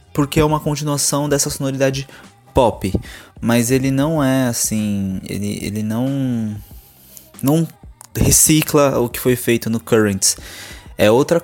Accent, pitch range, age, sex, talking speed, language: Brazilian, 105-135 Hz, 20-39, male, 130 wpm, Portuguese